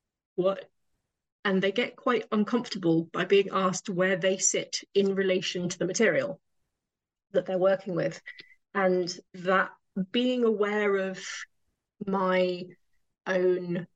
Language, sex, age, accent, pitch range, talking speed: English, female, 20-39, British, 180-210 Hz, 120 wpm